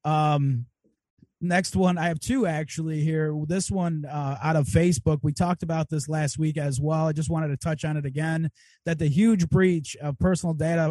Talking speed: 205 wpm